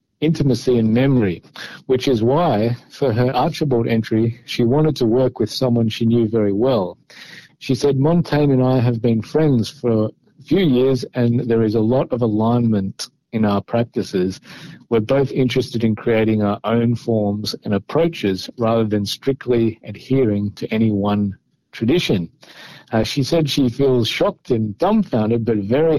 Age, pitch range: 50-69, 110-135 Hz